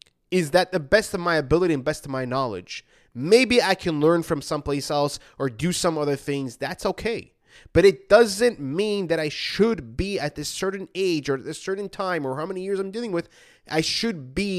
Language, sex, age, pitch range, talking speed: English, male, 20-39, 150-205 Hz, 220 wpm